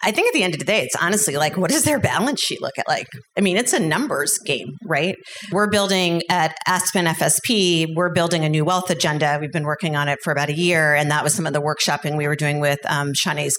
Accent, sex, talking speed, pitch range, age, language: American, female, 260 wpm, 155-185 Hz, 30-49, English